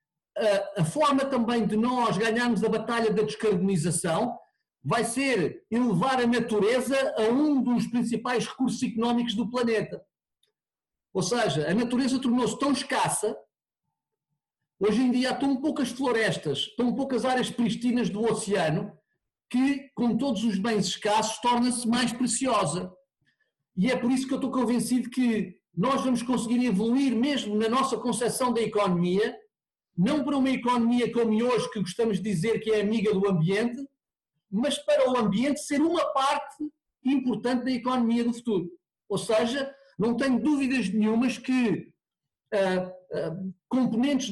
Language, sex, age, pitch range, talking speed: Portuguese, male, 50-69, 210-255 Hz, 145 wpm